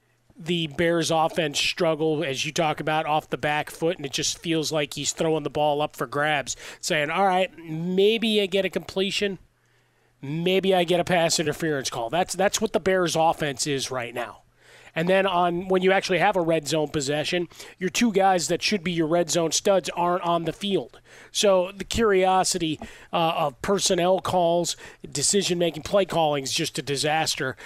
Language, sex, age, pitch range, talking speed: English, male, 30-49, 150-185 Hz, 190 wpm